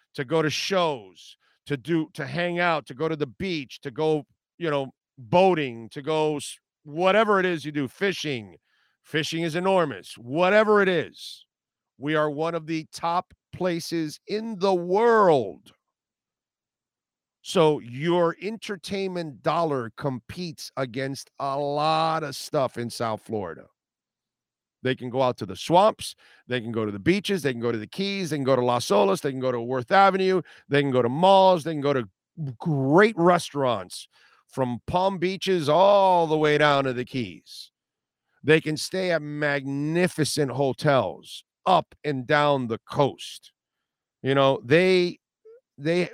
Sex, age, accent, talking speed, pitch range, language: male, 50-69, American, 160 wpm, 135-175 Hz, English